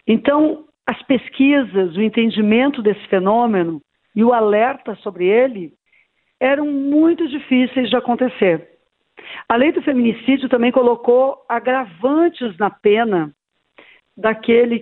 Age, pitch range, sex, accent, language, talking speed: 50-69, 215-265 Hz, female, Brazilian, Portuguese, 110 wpm